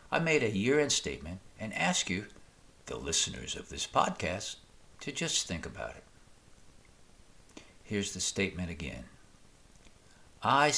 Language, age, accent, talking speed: English, 60-79, American, 130 wpm